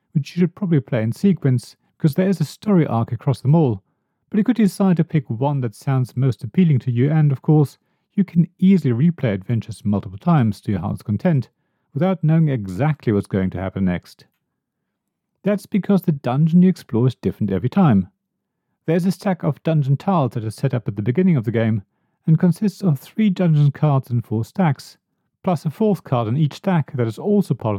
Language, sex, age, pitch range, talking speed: English, male, 40-59, 120-180 Hz, 210 wpm